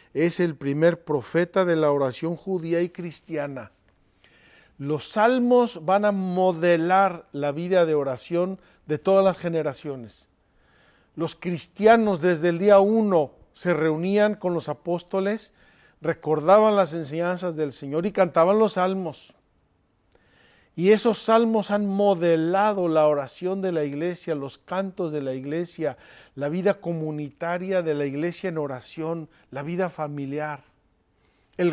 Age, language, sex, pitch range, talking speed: 50-69, Spanish, male, 155-195 Hz, 130 wpm